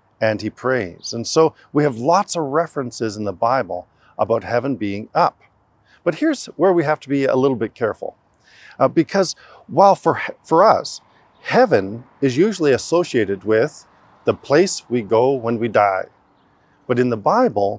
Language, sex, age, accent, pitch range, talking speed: English, male, 40-59, American, 115-160 Hz, 170 wpm